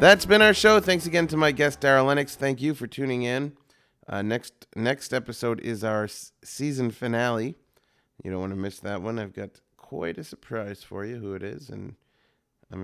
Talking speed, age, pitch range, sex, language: 200 wpm, 30-49, 110-145 Hz, male, English